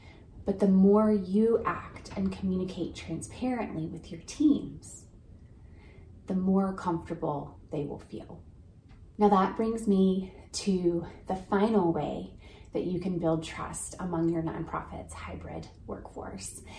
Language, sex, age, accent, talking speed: English, female, 30-49, American, 125 wpm